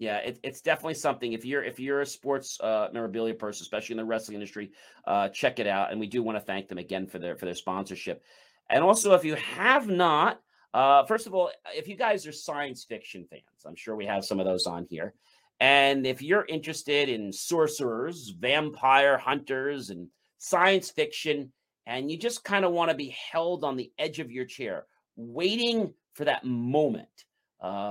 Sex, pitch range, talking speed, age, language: male, 115-160 Hz, 200 wpm, 40-59, English